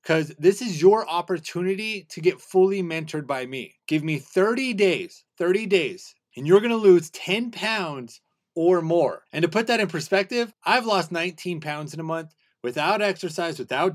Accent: American